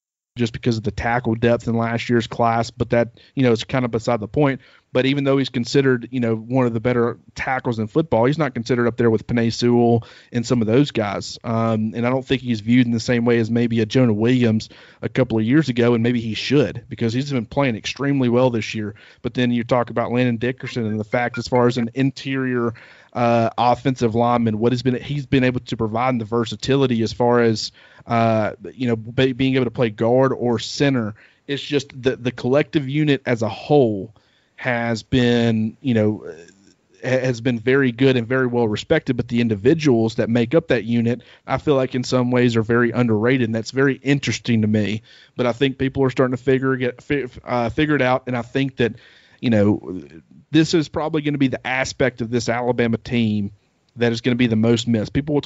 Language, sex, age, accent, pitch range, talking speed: English, male, 30-49, American, 115-130 Hz, 225 wpm